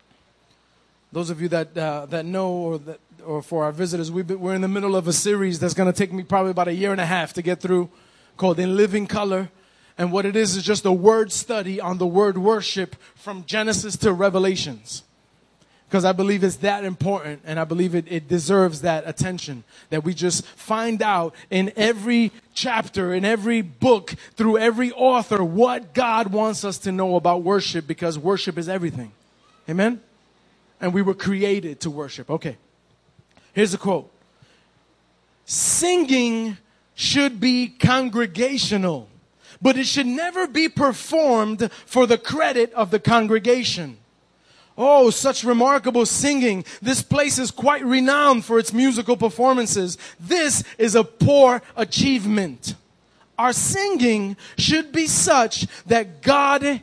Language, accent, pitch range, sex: English, American, 180-235 Hz, male